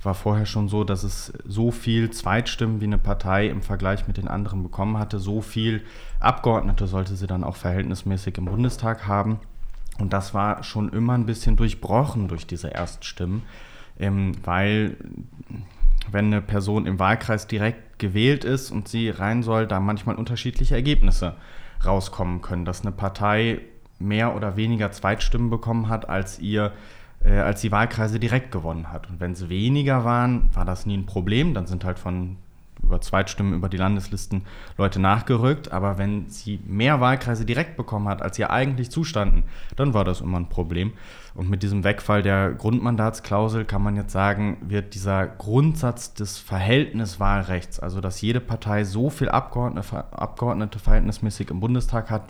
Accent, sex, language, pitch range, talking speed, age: German, male, German, 95-115 Hz, 165 wpm, 30-49